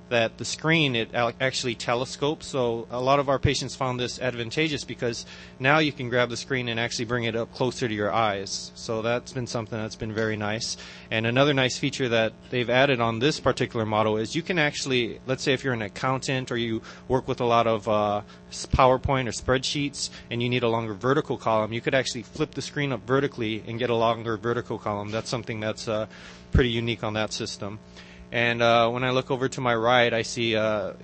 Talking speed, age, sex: 215 wpm, 30-49, male